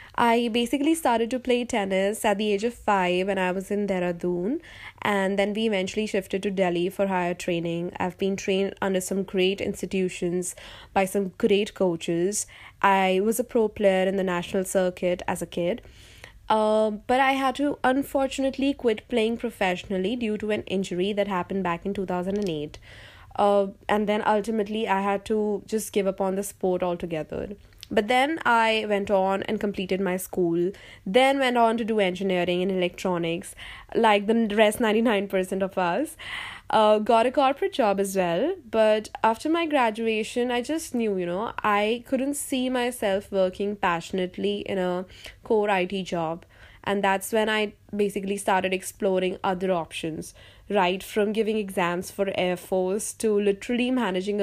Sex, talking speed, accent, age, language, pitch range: female, 170 wpm, native, 20-39, Hindi, 185-220 Hz